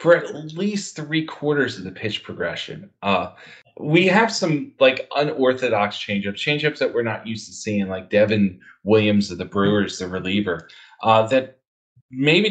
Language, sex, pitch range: English, male, 100-135 Hz